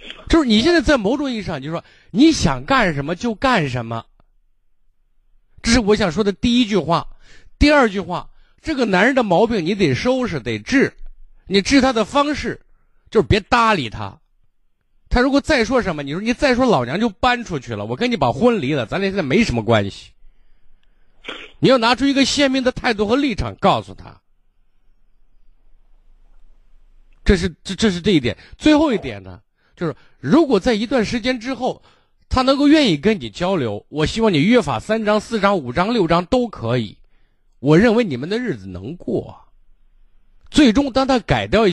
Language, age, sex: Chinese, 50-69, male